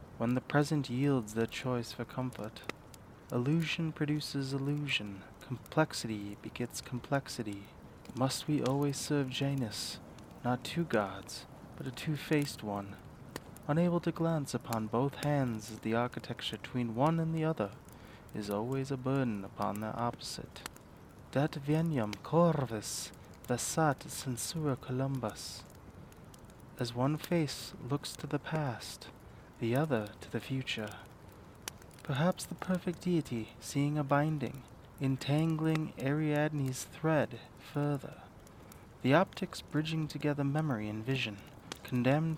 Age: 20-39